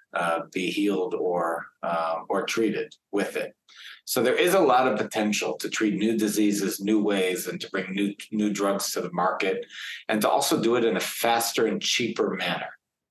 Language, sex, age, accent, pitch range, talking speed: English, male, 40-59, American, 95-115 Hz, 190 wpm